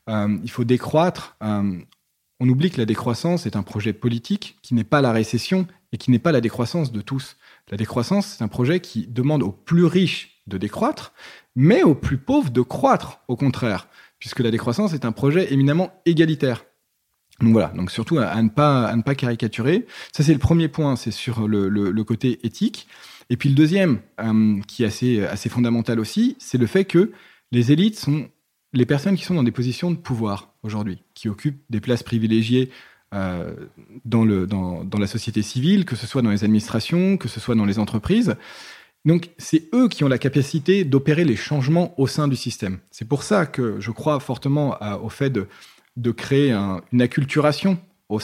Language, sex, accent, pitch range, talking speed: French, male, French, 115-160 Hz, 200 wpm